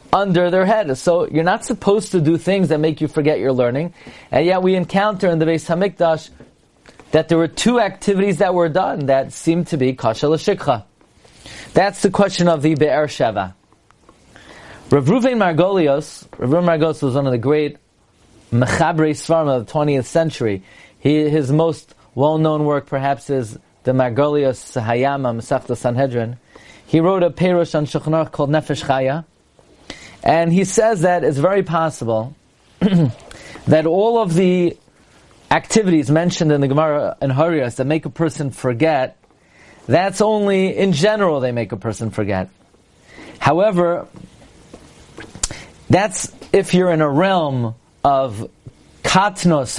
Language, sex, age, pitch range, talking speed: English, male, 30-49, 140-180 Hz, 150 wpm